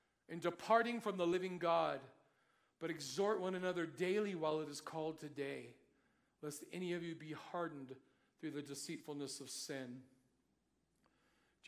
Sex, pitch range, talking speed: male, 160-225 Hz, 145 wpm